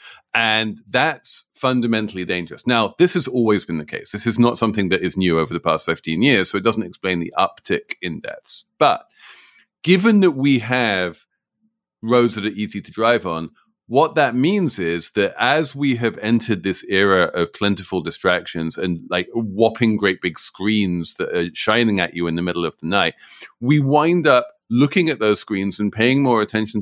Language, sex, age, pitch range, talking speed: English, male, 40-59, 95-125 Hz, 190 wpm